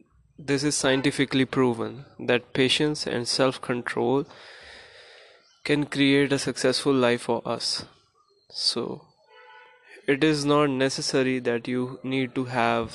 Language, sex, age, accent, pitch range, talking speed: Hindi, male, 20-39, native, 125-155 Hz, 120 wpm